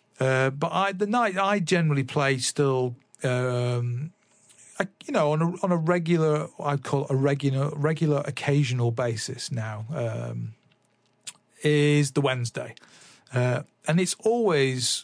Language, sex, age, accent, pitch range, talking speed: English, male, 40-59, British, 120-145 Hz, 140 wpm